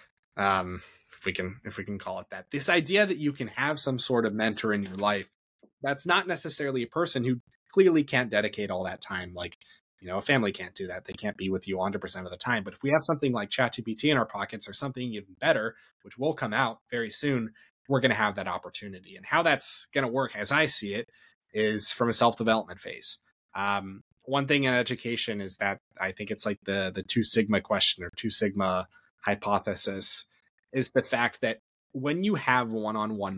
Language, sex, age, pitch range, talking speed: English, male, 20-39, 100-135 Hz, 220 wpm